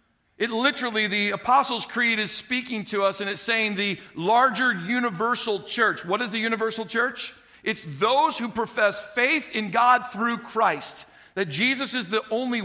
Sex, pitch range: male, 195-240 Hz